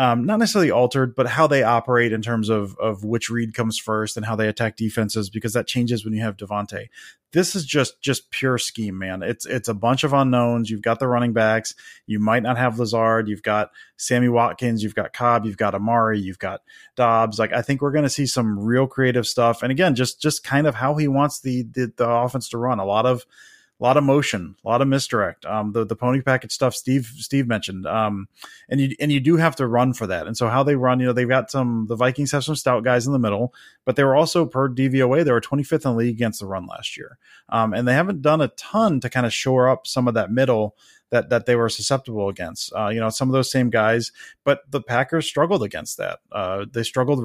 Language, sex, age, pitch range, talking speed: English, male, 20-39, 110-135 Hz, 250 wpm